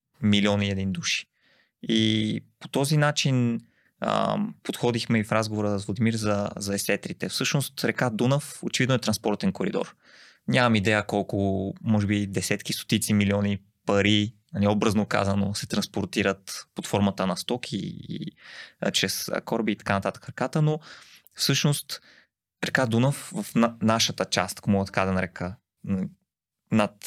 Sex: male